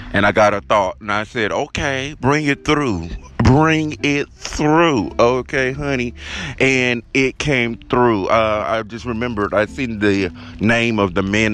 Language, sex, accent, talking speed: English, male, American, 165 wpm